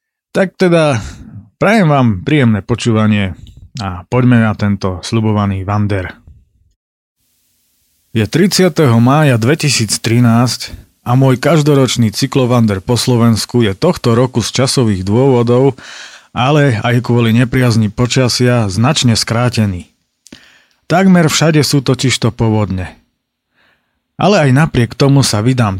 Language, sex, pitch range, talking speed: Slovak, male, 105-135 Hz, 105 wpm